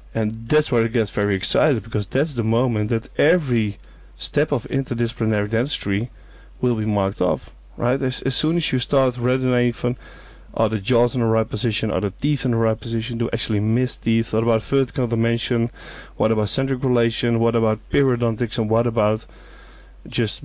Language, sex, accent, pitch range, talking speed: English, male, Dutch, 110-130 Hz, 180 wpm